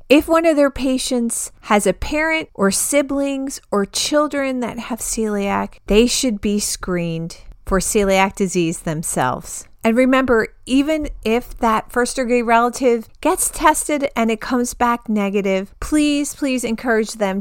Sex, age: female, 30-49